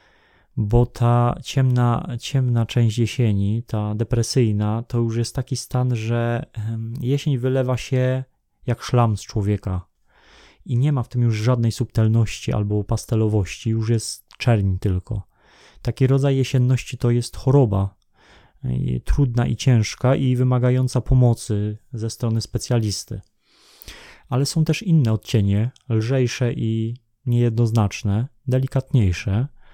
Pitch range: 110-125 Hz